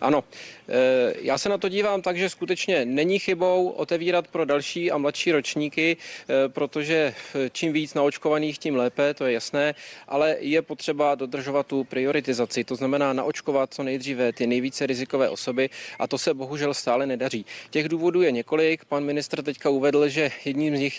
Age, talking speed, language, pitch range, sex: 30-49, 170 wpm, Czech, 135-155 Hz, male